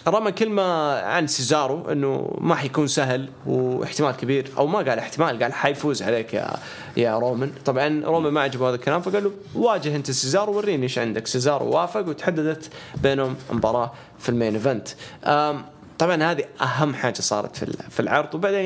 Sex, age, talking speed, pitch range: male, 20-39, 155 wpm, 125-155 Hz